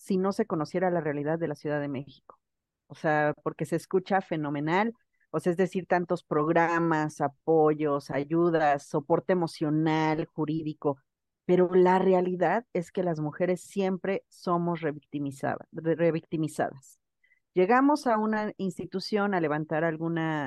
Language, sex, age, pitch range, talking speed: Spanish, female, 40-59, 150-185 Hz, 135 wpm